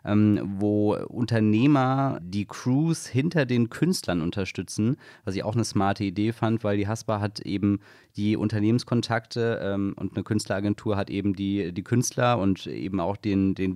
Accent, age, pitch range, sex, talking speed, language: German, 30-49, 100-115 Hz, male, 160 wpm, German